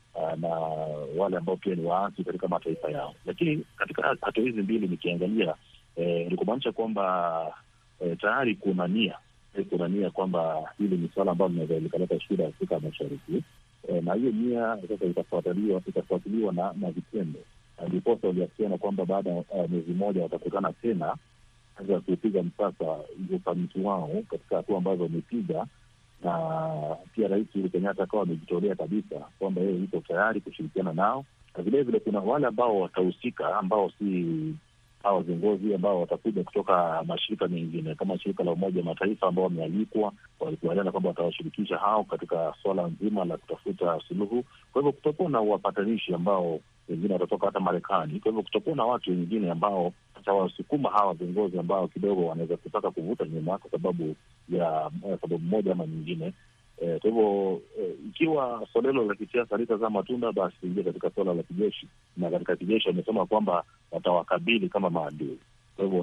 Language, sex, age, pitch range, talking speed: Swahili, male, 40-59, 90-115 Hz, 145 wpm